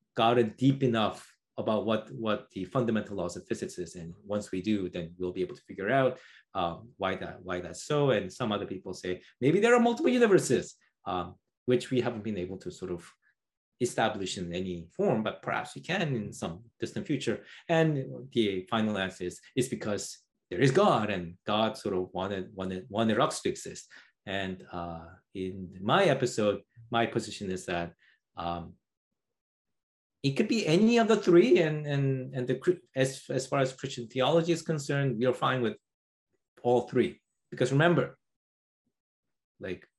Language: English